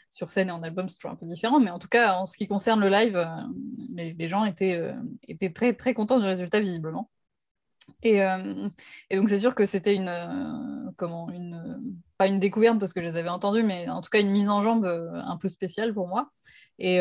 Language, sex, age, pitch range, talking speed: French, female, 20-39, 175-215 Hz, 245 wpm